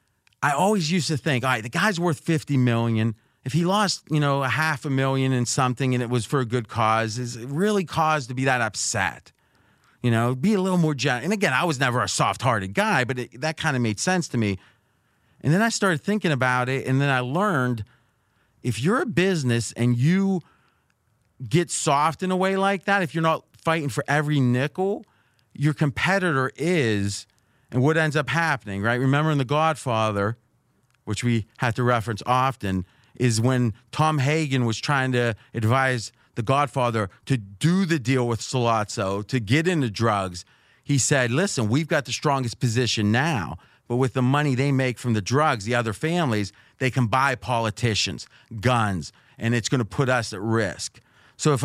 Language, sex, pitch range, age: English, male, 115-155 Hz, 30-49